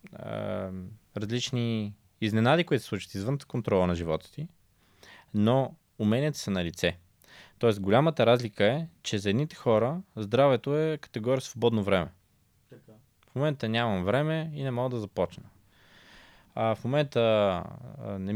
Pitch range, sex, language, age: 95-130 Hz, male, Bulgarian, 20-39